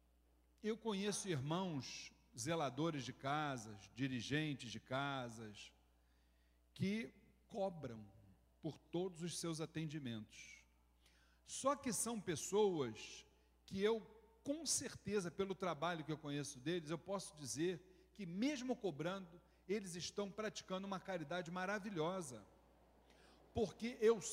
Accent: Brazilian